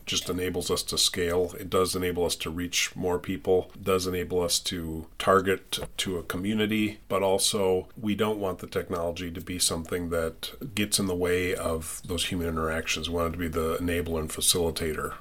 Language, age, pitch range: English, 40-59, 85-95 Hz